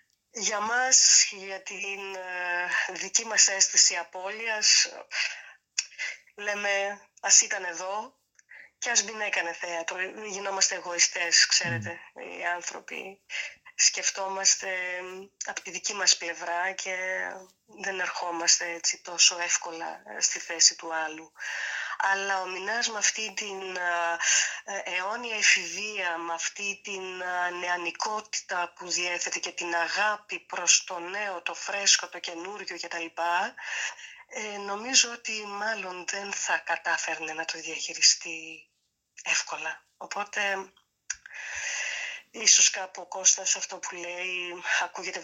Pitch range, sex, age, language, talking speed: 175-200 Hz, female, 20-39, Greek, 105 wpm